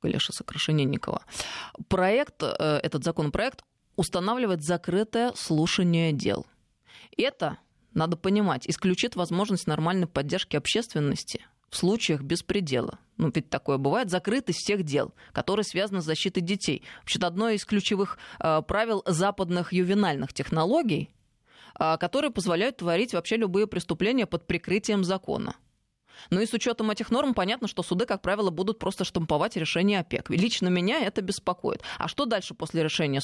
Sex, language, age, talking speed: female, Russian, 20-39, 135 wpm